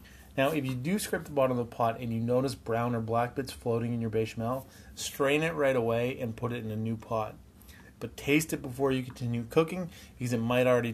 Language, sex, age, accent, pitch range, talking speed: English, male, 30-49, American, 110-135 Hz, 235 wpm